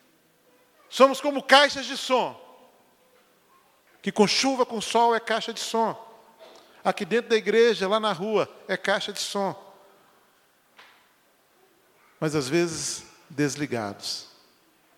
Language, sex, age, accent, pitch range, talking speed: Portuguese, male, 40-59, Brazilian, 210-300 Hz, 115 wpm